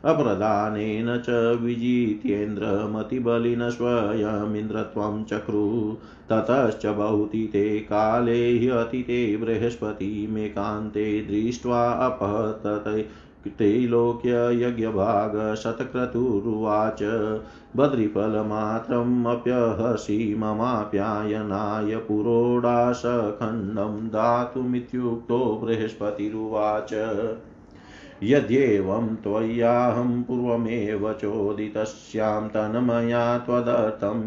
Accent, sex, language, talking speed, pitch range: native, male, Hindi, 40 wpm, 105-120 Hz